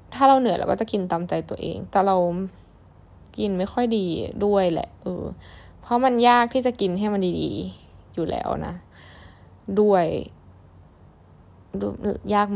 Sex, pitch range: female, 175-225 Hz